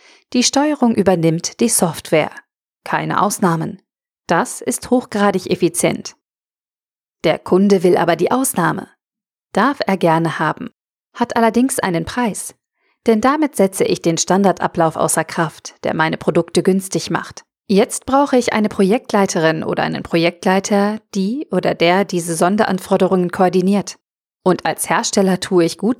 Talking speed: 135 wpm